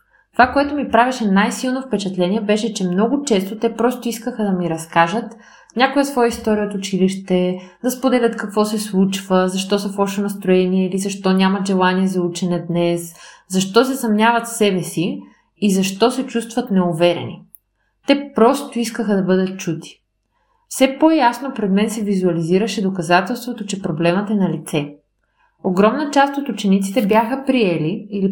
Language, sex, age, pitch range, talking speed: Bulgarian, female, 20-39, 180-230 Hz, 155 wpm